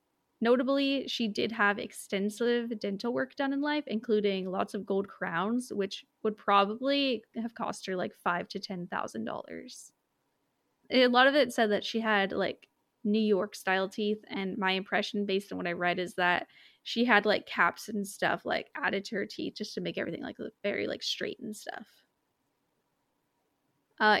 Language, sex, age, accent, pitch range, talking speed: English, female, 20-39, American, 190-230 Hz, 180 wpm